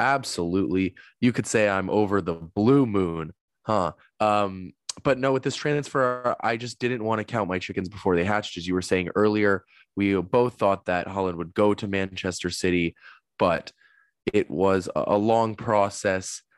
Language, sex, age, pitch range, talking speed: English, male, 20-39, 95-110 Hz, 175 wpm